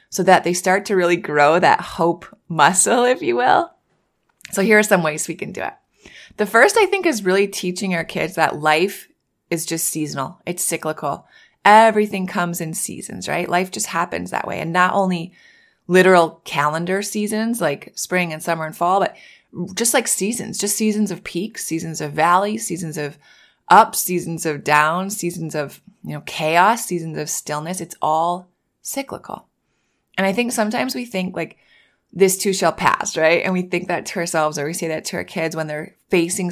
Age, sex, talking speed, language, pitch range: 20-39, female, 190 wpm, English, 165-205 Hz